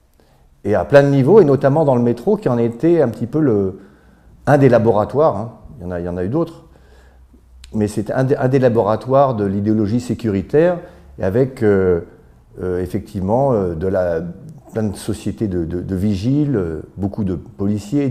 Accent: French